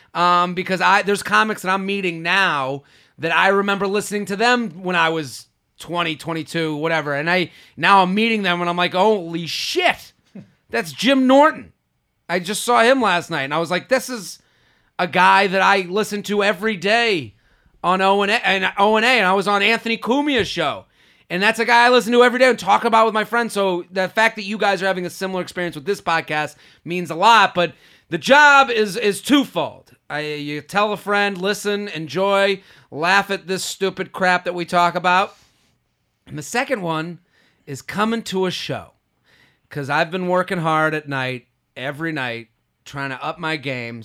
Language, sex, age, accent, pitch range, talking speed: English, male, 30-49, American, 145-200 Hz, 195 wpm